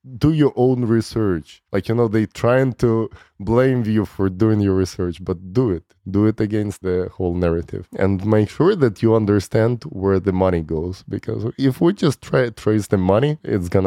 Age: 20-39